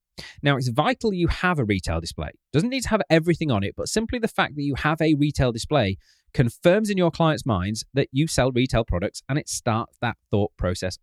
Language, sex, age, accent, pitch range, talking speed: English, male, 30-49, British, 105-150 Hz, 230 wpm